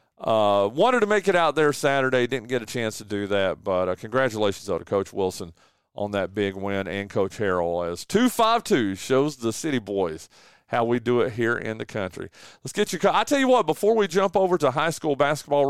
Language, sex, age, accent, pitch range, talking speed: English, male, 40-59, American, 115-155 Hz, 230 wpm